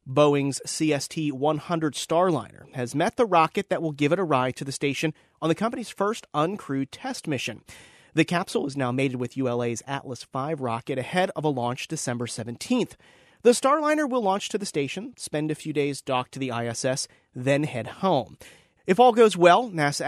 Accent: American